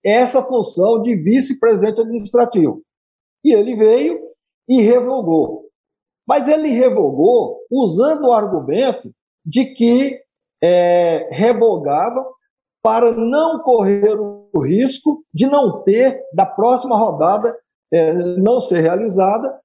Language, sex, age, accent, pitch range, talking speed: Portuguese, male, 50-69, Brazilian, 205-270 Hz, 105 wpm